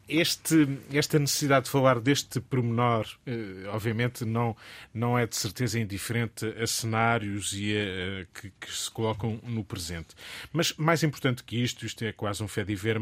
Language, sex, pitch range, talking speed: Portuguese, male, 110-135 Hz, 155 wpm